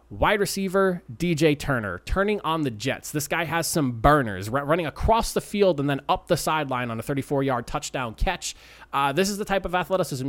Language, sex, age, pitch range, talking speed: English, male, 20-39, 125-160 Hz, 200 wpm